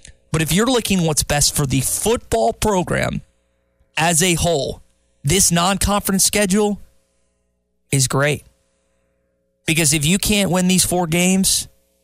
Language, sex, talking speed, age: English, male, 130 wpm, 20-39